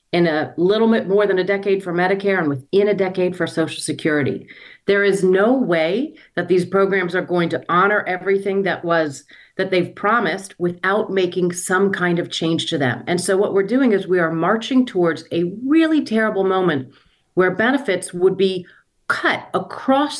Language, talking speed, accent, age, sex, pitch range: English, 185 wpm, American, 40-59, female, 165-200 Hz